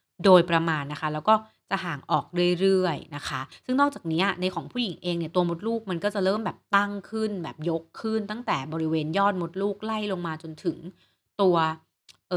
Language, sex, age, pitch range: Thai, female, 30-49, 155-195 Hz